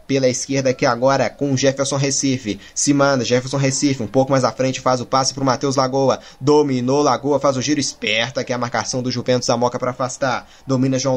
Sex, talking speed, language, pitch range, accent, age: male, 220 wpm, Portuguese, 125-145 Hz, Brazilian, 20-39